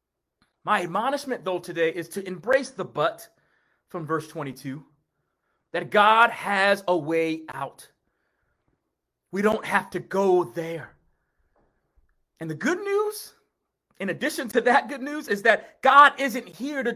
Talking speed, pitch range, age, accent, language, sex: 140 wpm, 185-275 Hz, 30-49, American, English, male